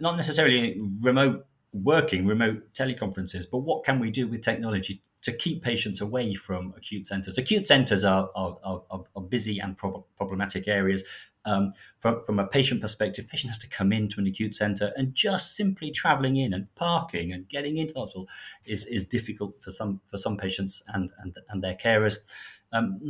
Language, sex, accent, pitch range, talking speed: English, male, British, 95-130 Hz, 180 wpm